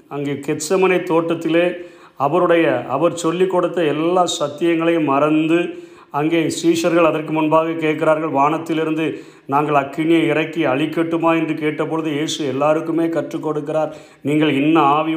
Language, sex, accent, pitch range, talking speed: Tamil, male, native, 155-185 Hz, 105 wpm